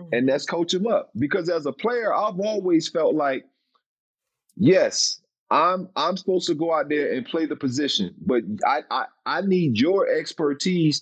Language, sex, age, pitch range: English, male, 40-59, 135-185 Hz